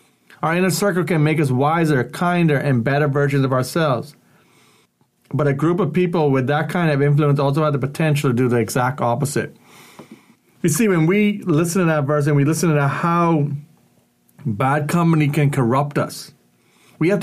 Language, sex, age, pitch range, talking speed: English, male, 40-59, 140-175 Hz, 180 wpm